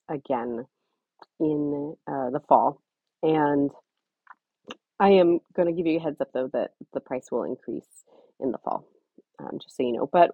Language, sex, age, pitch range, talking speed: English, female, 30-49, 140-195 Hz, 175 wpm